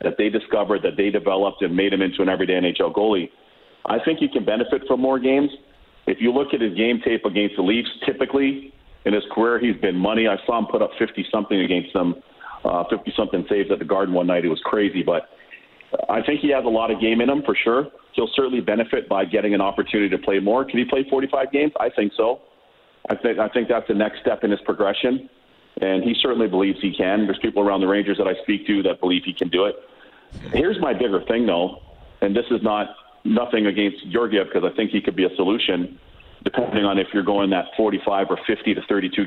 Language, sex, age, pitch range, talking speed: English, male, 40-59, 100-125 Hz, 230 wpm